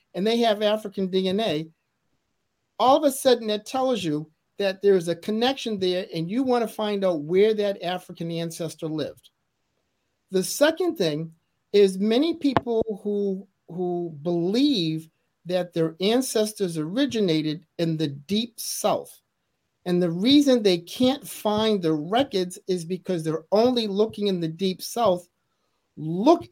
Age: 50-69